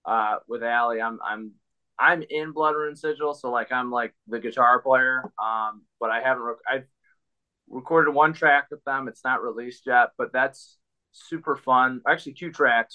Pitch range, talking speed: 110-145 Hz, 180 wpm